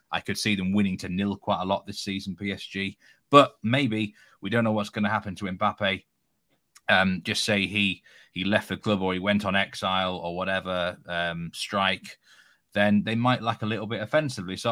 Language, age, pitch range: English, 30-49, 90-105 Hz